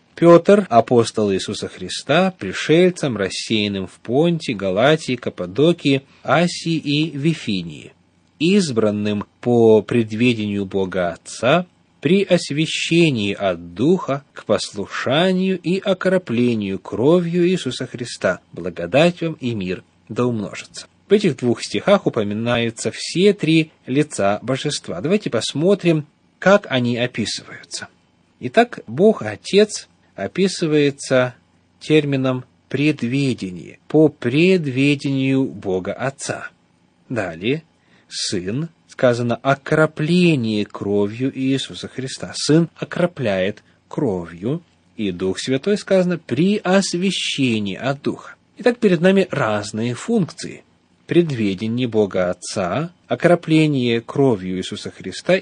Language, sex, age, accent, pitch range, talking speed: Russian, male, 30-49, native, 105-170 Hz, 95 wpm